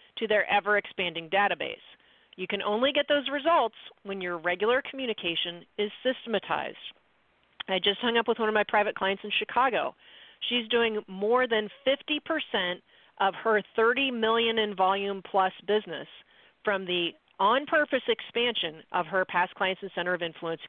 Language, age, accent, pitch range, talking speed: English, 40-59, American, 185-235 Hz, 155 wpm